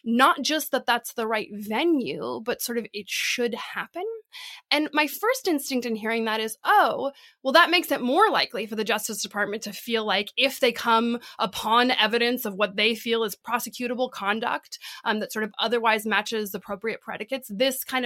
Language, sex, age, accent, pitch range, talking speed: English, female, 20-39, American, 220-300 Hz, 190 wpm